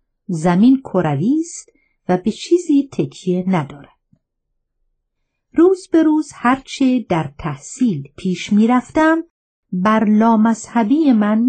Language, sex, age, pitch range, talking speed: Persian, female, 50-69, 165-265 Hz, 105 wpm